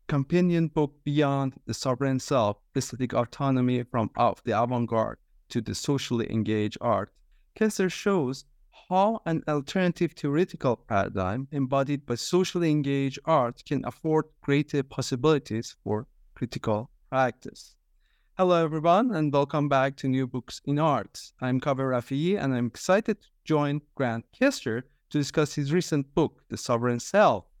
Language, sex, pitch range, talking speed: English, male, 120-145 Hz, 140 wpm